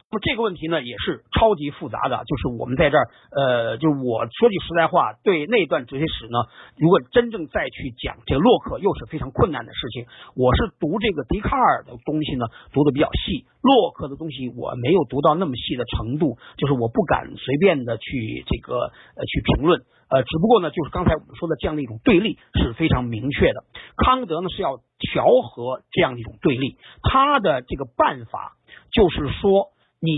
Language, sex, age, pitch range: Chinese, male, 50-69, 135-205 Hz